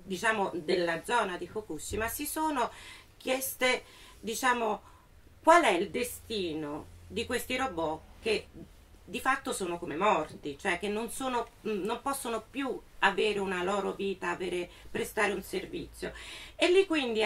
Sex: female